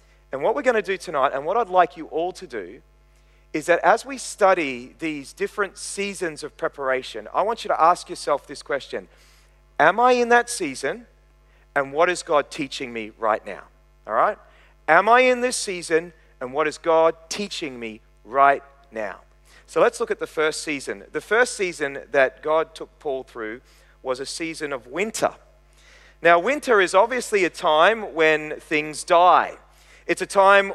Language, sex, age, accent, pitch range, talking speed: English, male, 40-59, Australian, 150-220 Hz, 180 wpm